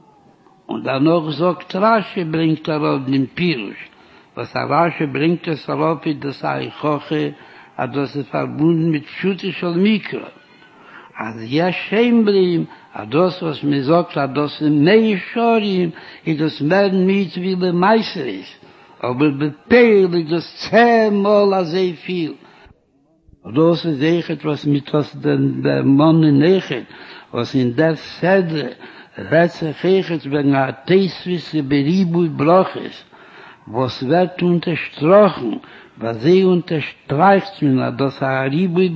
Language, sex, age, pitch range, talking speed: Hebrew, male, 60-79, 145-185 Hz, 110 wpm